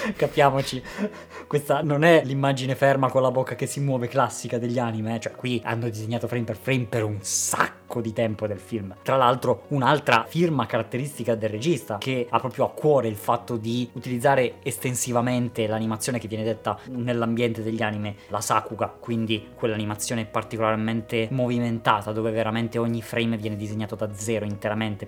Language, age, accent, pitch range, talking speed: Italian, 20-39, native, 115-140 Hz, 165 wpm